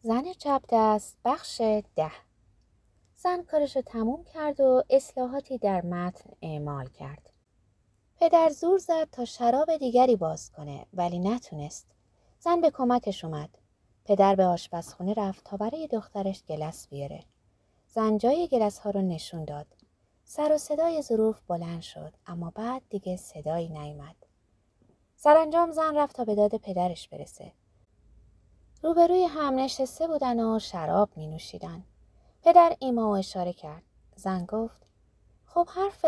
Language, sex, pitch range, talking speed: Persian, female, 170-270 Hz, 135 wpm